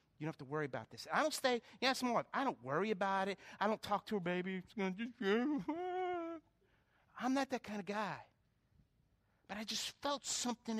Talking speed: 215 wpm